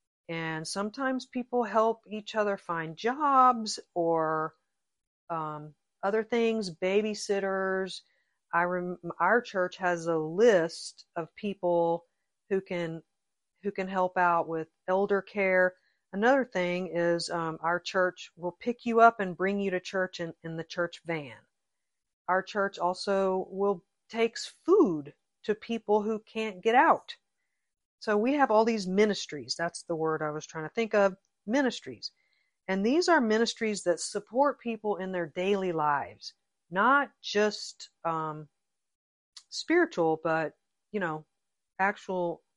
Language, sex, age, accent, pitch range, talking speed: English, female, 50-69, American, 165-220 Hz, 140 wpm